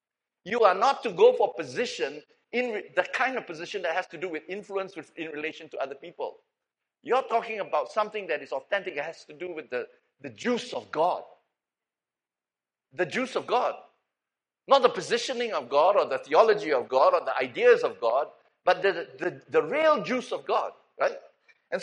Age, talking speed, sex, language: 60-79, 200 wpm, male, English